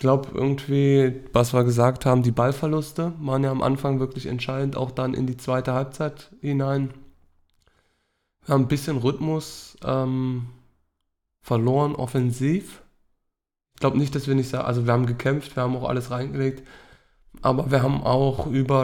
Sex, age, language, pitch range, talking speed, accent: male, 20-39, German, 120-135 Hz, 160 wpm, German